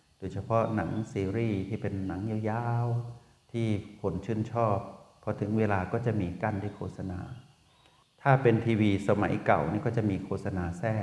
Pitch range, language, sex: 95-120 Hz, Thai, male